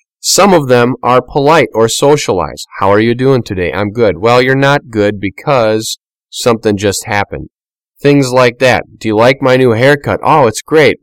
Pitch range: 95-130 Hz